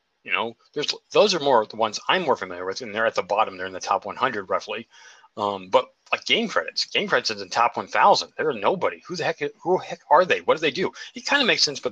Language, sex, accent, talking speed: English, male, American, 275 wpm